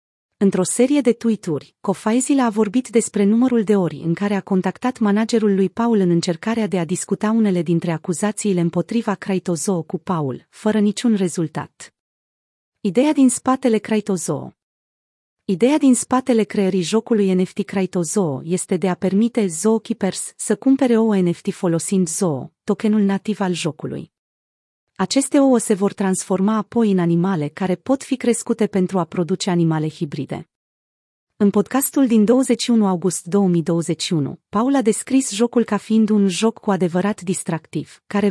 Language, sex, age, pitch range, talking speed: Romanian, female, 30-49, 180-220 Hz, 145 wpm